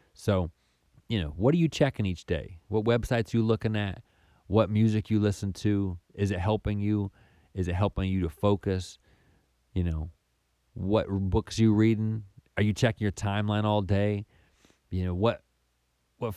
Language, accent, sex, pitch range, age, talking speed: English, American, male, 90-110 Hz, 30-49, 170 wpm